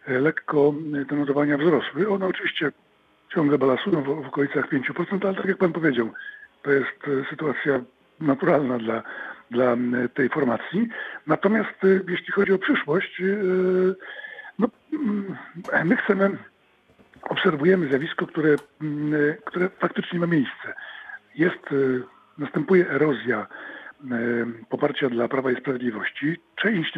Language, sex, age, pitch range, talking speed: Polish, male, 50-69, 135-185 Hz, 100 wpm